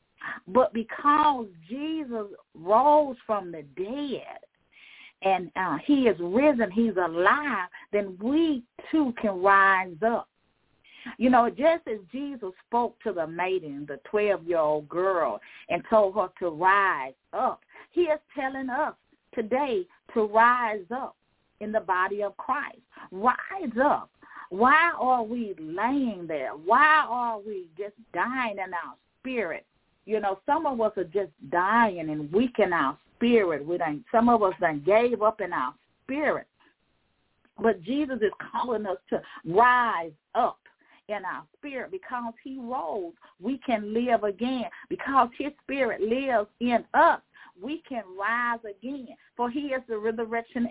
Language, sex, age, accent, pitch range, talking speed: English, female, 40-59, American, 200-270 Hz, 145 wpm